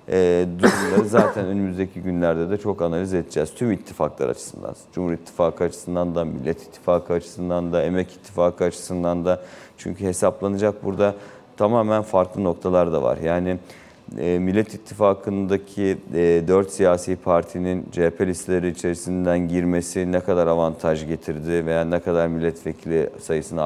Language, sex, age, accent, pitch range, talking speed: Turkish, male, 40-59, native, 85-95 Hz, 135 wpm